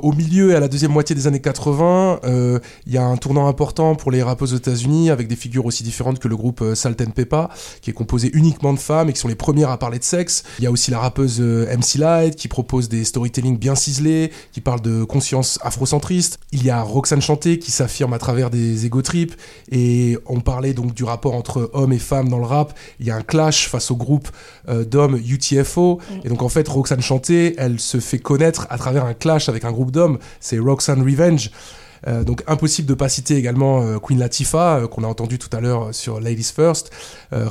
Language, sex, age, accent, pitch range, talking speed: French, male, 20-39, French, 120-150 Hz, 225 wpm